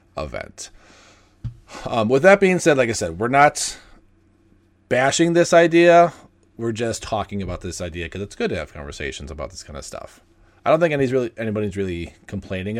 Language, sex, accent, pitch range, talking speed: English, male, American, 95-125 Hz, 185 wpm